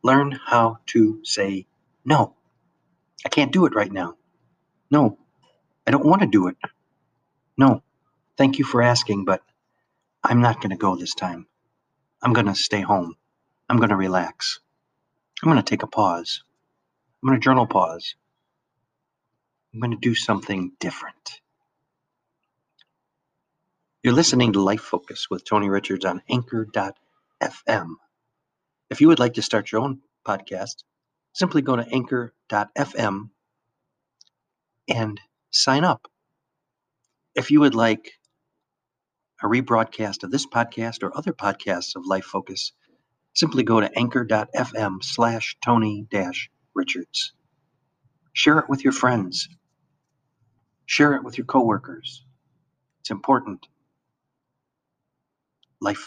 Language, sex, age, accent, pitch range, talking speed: English, male, 50-69, American, 105-140 Hz, 125 wpm